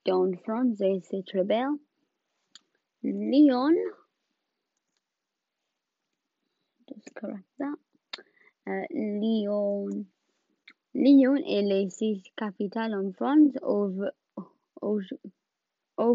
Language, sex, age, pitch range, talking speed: French, female, 20-39, 200-275 Hz, 65 wpm